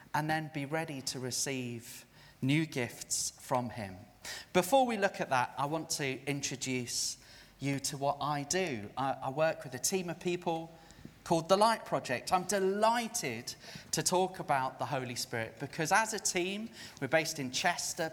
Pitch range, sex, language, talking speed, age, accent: 130-175 Hz, male, English, 170 wpm, 30-49, British